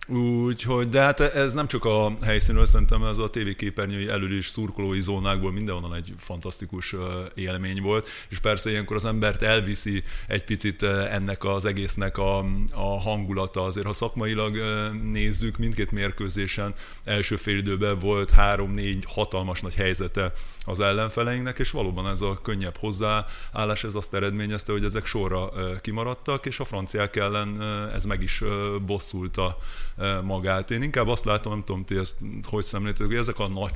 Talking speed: 155 wpm